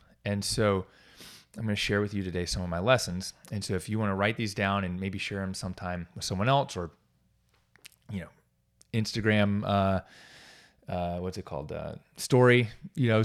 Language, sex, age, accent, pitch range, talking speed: English, male, 30-49, American, 105-135 Hz, 195 wpm